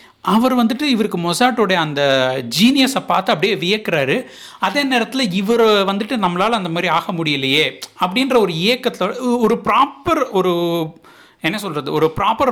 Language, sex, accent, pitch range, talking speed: Tamil, male, native, 145-225 Hz, 135 wpm